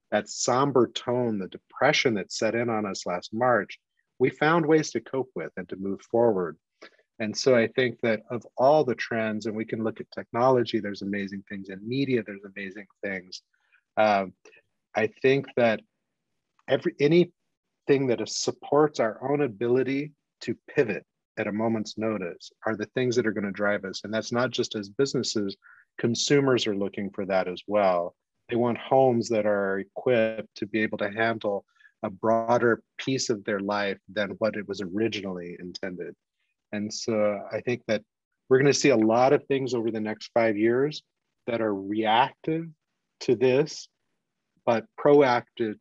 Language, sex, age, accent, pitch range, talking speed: English, male, 30-49, American, 105-125 Hz, 170 wpm